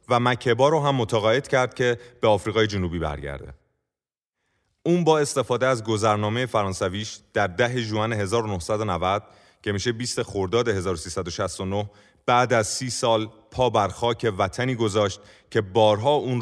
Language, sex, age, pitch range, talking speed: Persian, male, 30-49, 90-120 Hz, 135 wpm